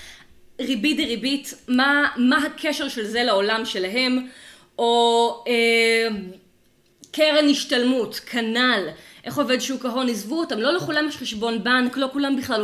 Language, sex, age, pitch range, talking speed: Hebrew, female, 20-39, 225-285 Hz, 135 wpm